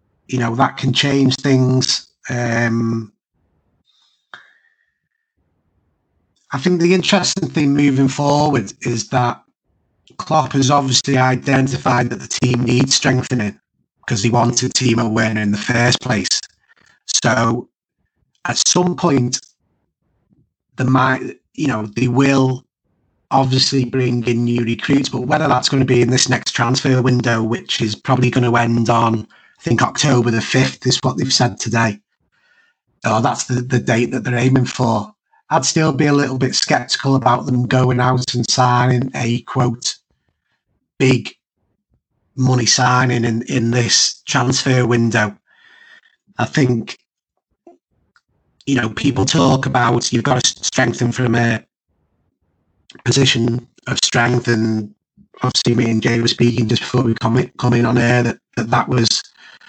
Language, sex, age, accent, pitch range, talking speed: English, male, 30-49, British, 120-135 Hz, 150 wpm